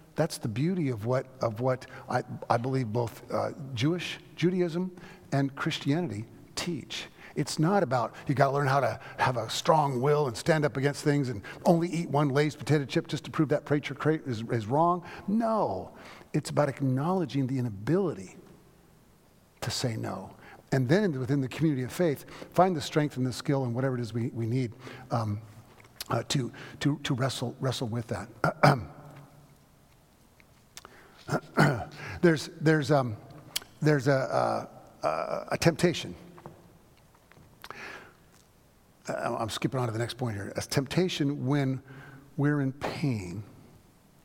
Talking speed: 155 wpm